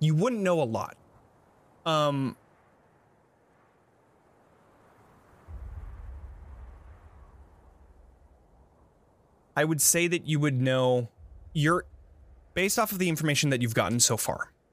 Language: English